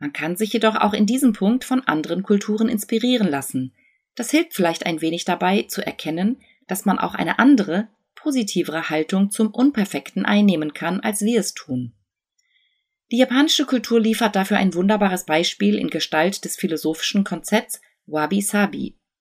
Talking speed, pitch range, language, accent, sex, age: 155 wpm, 170-225 Hz, German, German, female, 30-49